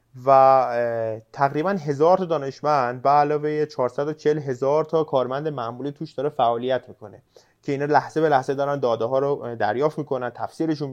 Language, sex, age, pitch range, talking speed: Persian, male, 30-49, 120-150 Hz, 150 wpm